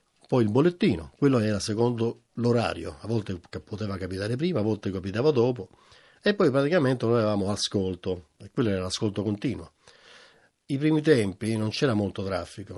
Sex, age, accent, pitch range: male, 50-69, native, 100-130 Hz